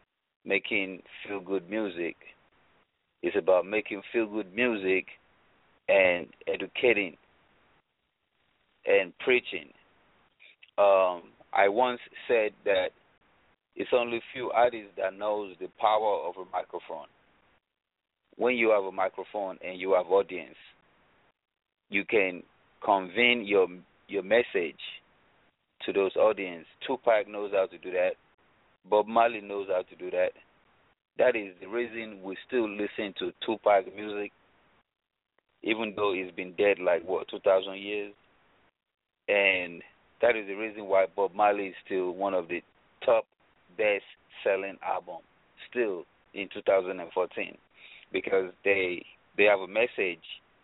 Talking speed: 125 wpm